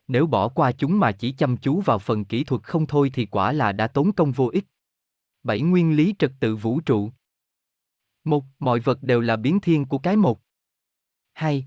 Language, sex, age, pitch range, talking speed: Vietnamese, male, 20-39, 115-155 Hz, 205 wpm